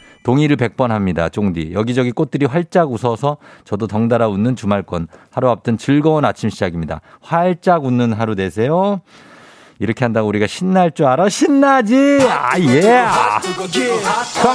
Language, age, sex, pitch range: Korean, 50-69, male, 110-175 Hz